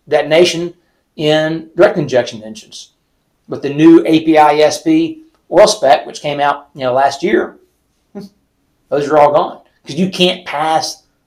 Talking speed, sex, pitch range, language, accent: 145 wpm, male, 130-160 Hz, English, American